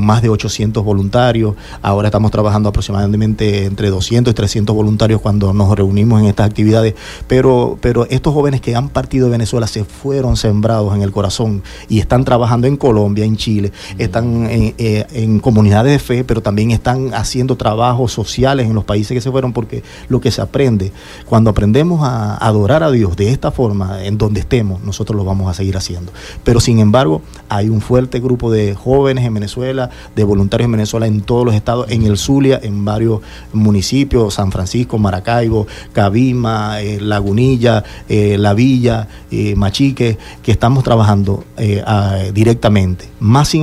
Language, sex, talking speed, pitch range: Spanish, male, 170 wpm, 105-125 Hz